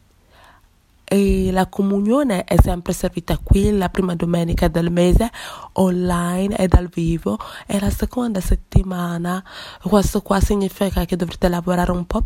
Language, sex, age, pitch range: English, female, 20-39, 170-195 Hz